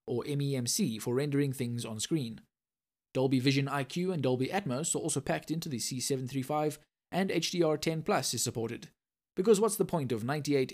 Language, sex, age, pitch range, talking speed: English, male, 20-39, 130-170 Hz, 160 wpm